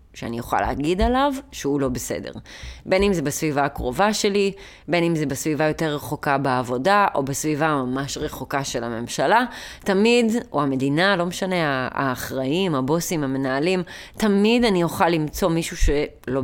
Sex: female